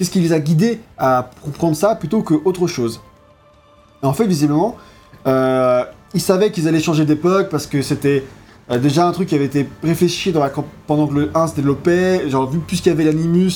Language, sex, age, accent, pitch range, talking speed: French, male, 20-39, French, 130-175 Hz, 200 wpm